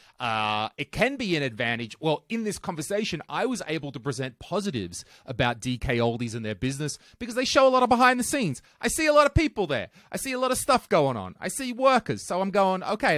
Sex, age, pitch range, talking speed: male, 30-49, 130-200 Hz, 240 wpm